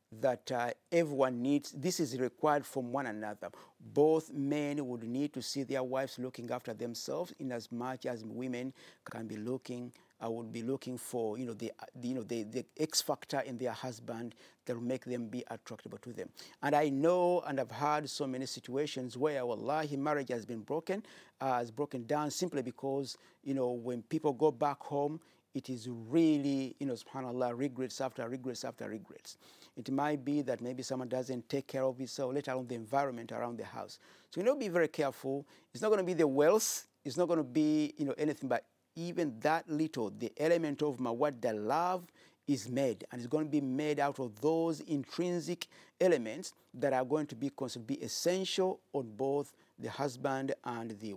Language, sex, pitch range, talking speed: English, male, 125-150 Hz, 195 wpm